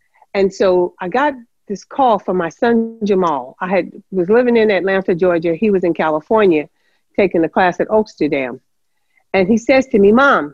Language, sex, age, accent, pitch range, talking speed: English, female, 50-69, American, 175-250 Hz, 180 wpm